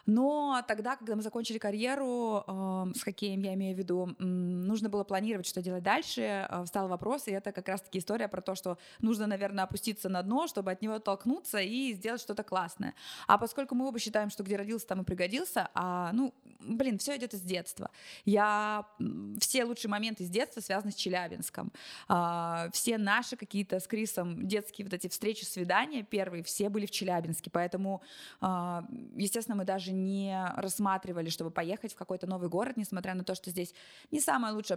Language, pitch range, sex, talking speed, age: Russian, 180-220 Hz, female, 175 wpm, 20-39